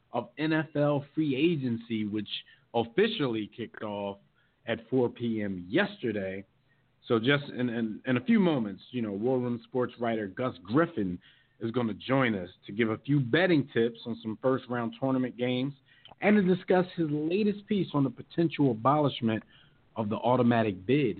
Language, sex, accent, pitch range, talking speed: English, male, American, 110-145 Hz, 160 wpm